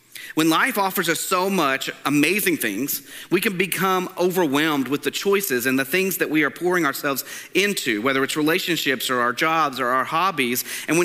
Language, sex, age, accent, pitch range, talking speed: English, male, 40-59, American, 140-175 Hz, 190 wpm